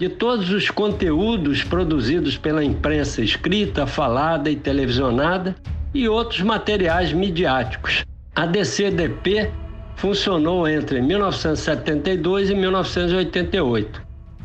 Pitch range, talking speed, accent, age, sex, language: 130-190 Hz, 90 wpm, Brazilian, 60-79, male, Portuguese